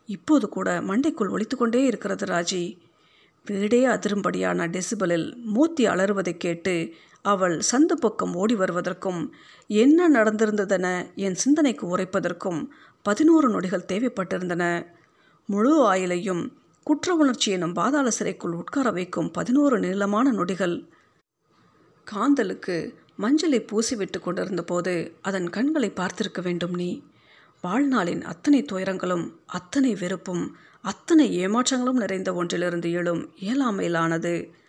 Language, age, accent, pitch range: Tamil, 50-69, native, 180-245 Hz